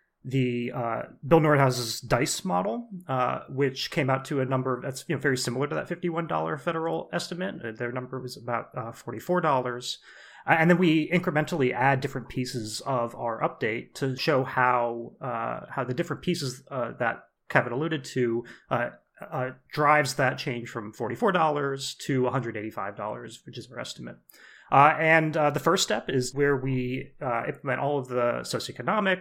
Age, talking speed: 30-49, 160 wpm